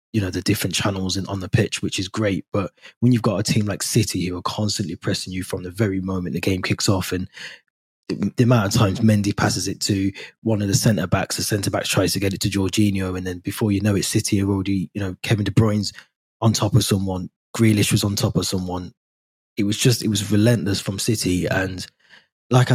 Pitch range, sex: 95-110 Hz, male